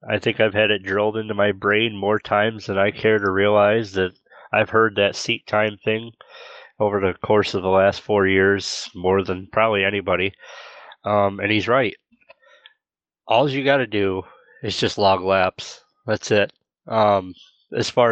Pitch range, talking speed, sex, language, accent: 105-125 Hz, 175 wpm, male, English, American